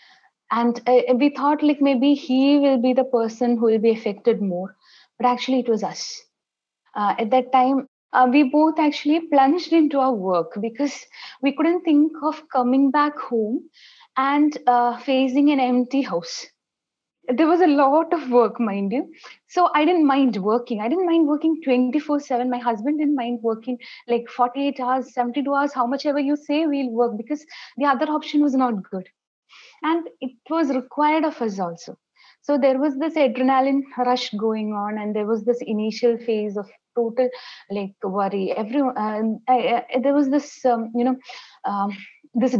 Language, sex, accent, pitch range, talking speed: English, female, Indian, 230-280 Hz, 175 wpm